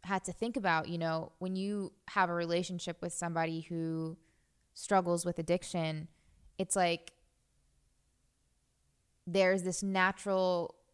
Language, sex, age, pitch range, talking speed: English, female, 20-39, 165-190 Hz, 120 wpm